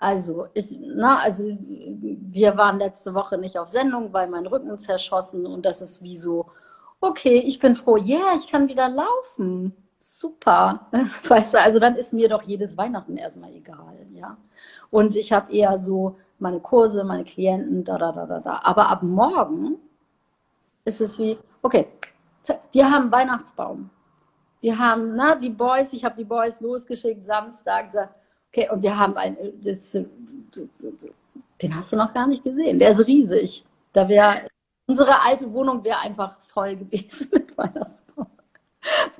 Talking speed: 165 wpm